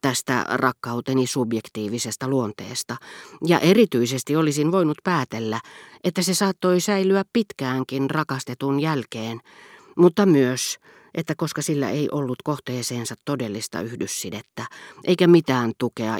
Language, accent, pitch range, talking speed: Finnish, native, 120-165 Hz, 105 wpm